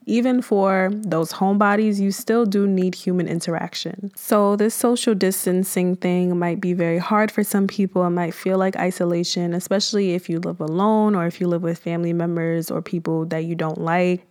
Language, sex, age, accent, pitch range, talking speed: English, female, 20-39, American, 170-205 Hz, 190 wpm